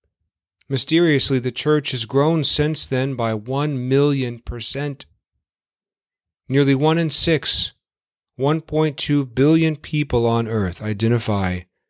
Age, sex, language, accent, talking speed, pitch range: 40-59, male, English, American, 105 wpm, 95-135 Hz